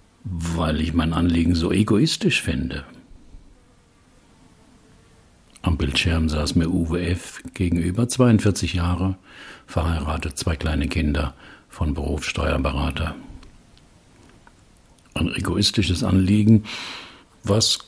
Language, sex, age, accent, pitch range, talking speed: German, male, 60-79, German, 80-110 Hz, 85 wpm